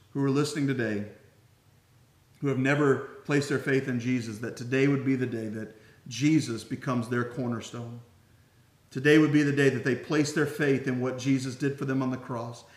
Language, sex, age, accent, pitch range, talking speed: English, male, 40-59, American, 115-145 Hz, 195 wpm